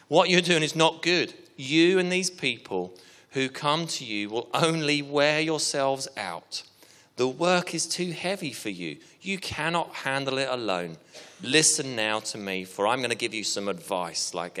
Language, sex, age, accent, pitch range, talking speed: English, male, 30-49, British, 110-155 Hz, 180 wpm